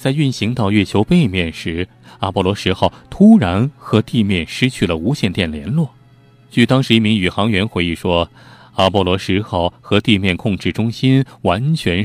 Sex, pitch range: male, 95-125 Hz